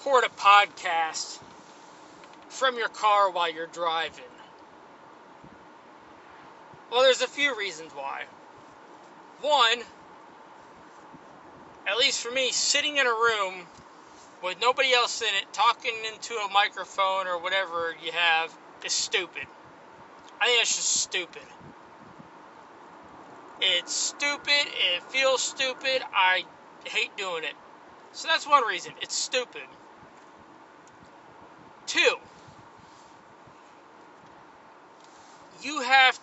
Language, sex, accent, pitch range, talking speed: English, male, American, 185-270 Hz, 100 wpm